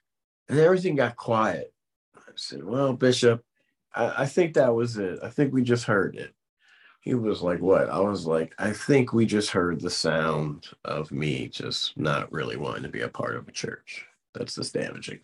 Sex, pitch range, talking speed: male, 95-125 Hz, 195 wpm